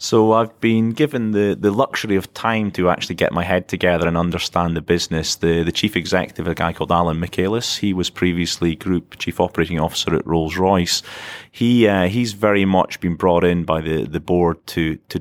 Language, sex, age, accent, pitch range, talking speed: English, male, 30-49, British, 80-100 Hz, 205 wpm